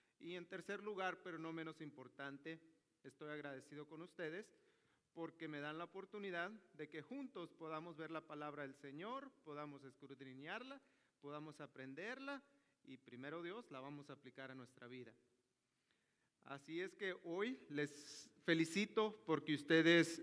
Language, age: Spanish, 40-59